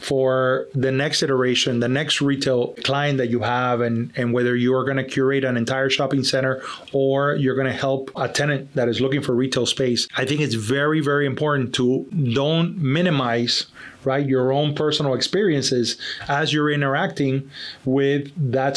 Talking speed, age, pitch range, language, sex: 175 wpm, 30-49, 130-150 Hz, English, male